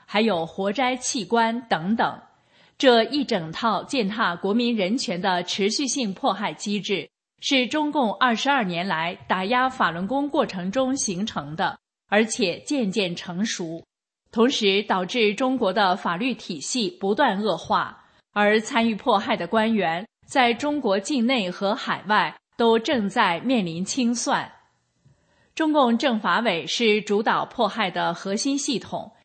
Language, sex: English, female